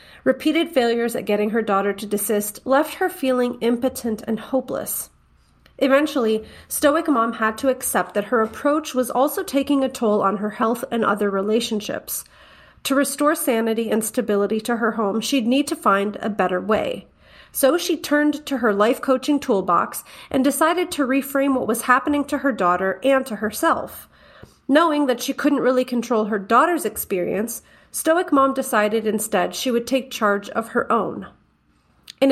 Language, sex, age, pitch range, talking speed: English, female, 30-49, 220-280 Hz, 170 wpm